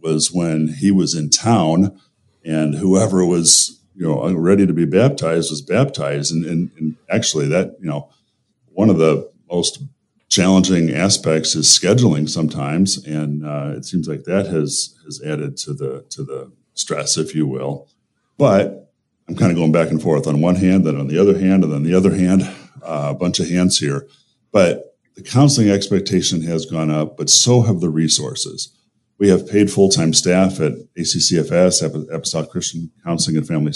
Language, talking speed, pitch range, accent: English, 180 wpm, 75-95 Hz, American